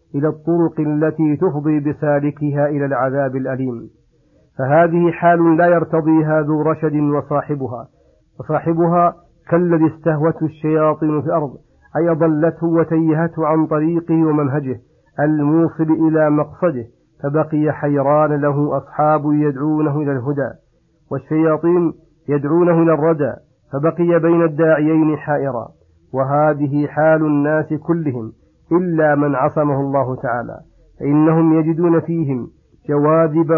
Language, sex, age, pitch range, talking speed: Arabic, male, 50-69, 145-160 Hz, 105 wpm